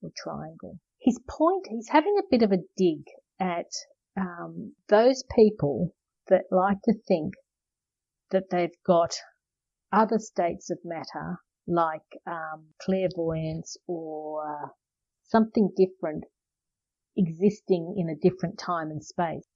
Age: 50-69